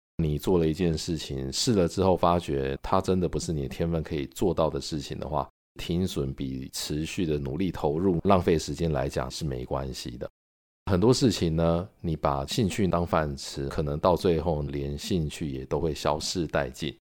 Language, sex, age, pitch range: Chinese, male, 50-69, 70-90 Hz